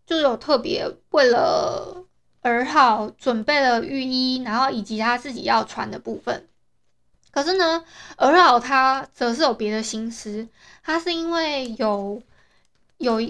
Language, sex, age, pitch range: Chinese, female, 20-39, 235-325 Hz